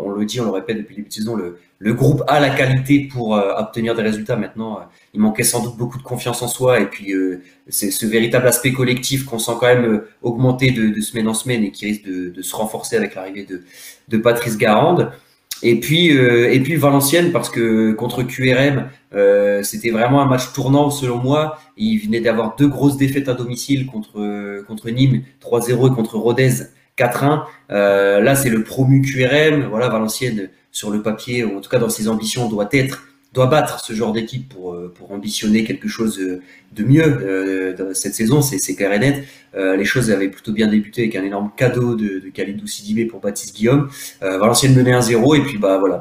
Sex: male